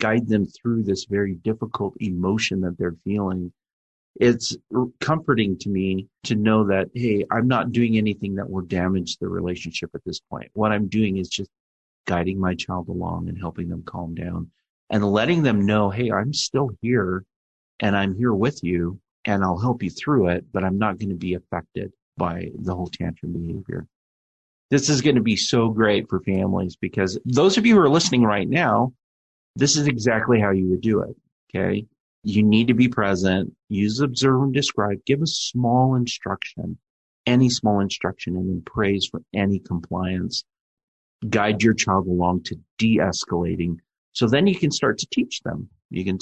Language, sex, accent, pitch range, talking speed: English, male, American, 95-120 Hz, 180 wpm